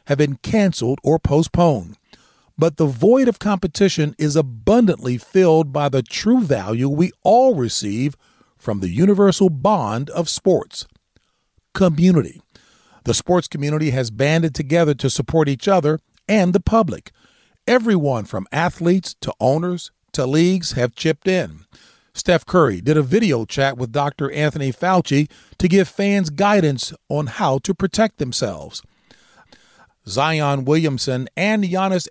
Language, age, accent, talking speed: English, 40-59, American, 135 wpm